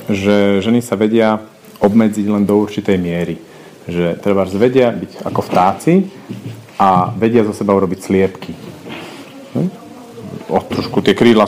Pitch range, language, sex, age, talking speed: 100-125 Hz, Slovak, male, 40-59, 135 wpm